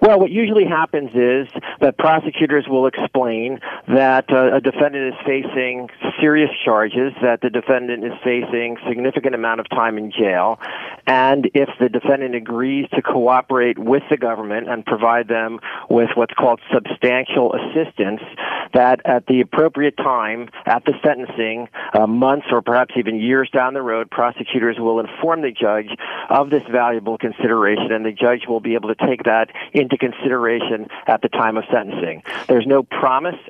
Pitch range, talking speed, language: 115-135 Hz, 165 wpm, English